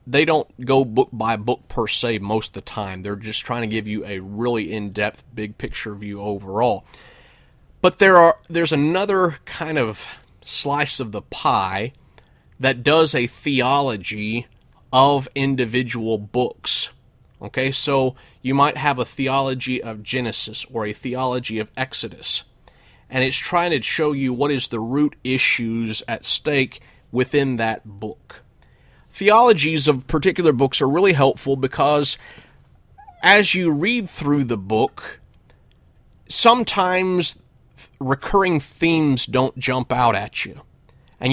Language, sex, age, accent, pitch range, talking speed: English, male, 30-49, American, 115-150 Hz, 140 wpm